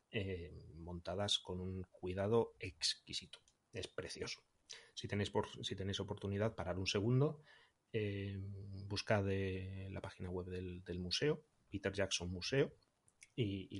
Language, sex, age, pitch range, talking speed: Spanish, male, 30-49, 95-115 Hz, 125 wpm